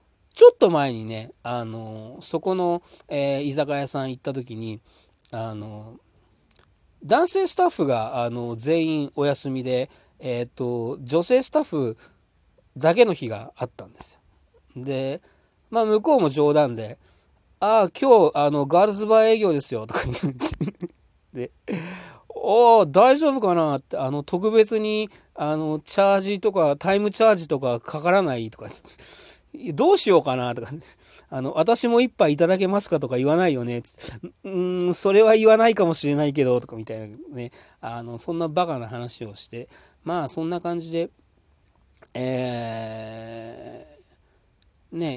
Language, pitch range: Japanese, 115-175 Hz